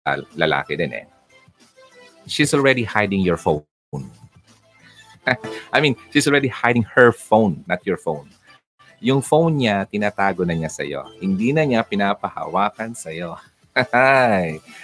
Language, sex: Filipino, male